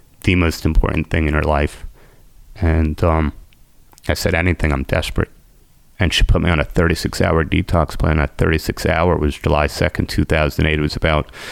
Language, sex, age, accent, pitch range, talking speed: English, male, 30-49, American, 75-90 Hz, 175 wpm